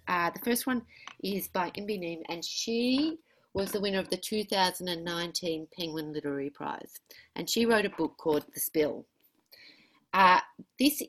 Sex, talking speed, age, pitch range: female, 155 wpm, 40-59, 165-235 Hz